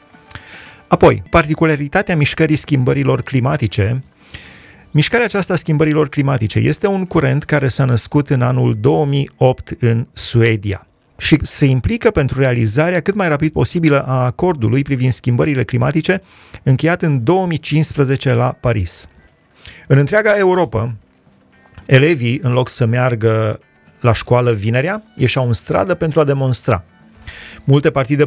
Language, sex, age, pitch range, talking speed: Romanian, male, 30-49, 115-150 Hz, 125 wpm